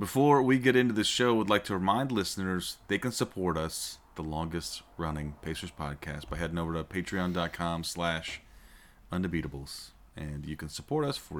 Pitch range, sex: 75-100 Hz, male